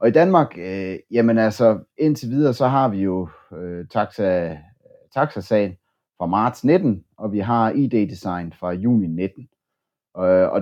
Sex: male